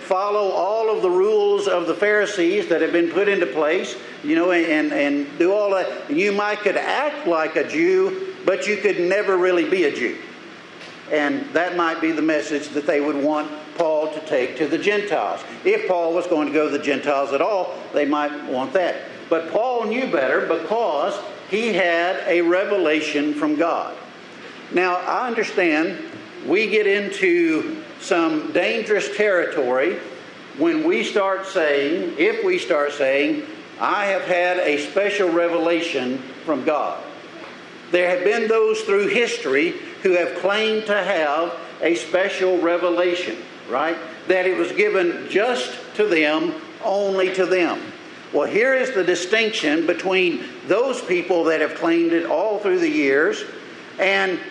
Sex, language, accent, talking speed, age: male, English, American, 160 wpm, 50-69